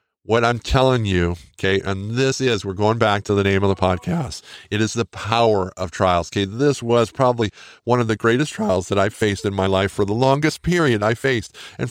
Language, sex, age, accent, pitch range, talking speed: English, male, 50-69, American, 105-135 Hz, 225 wpm